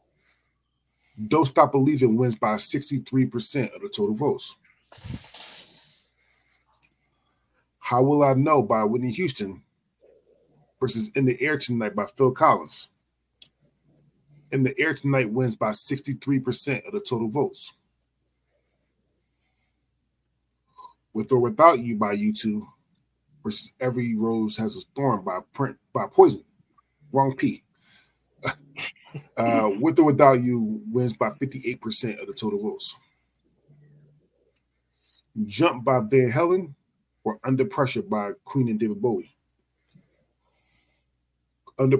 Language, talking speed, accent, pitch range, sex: English, 120 wpm, American, 110-150 Hz, male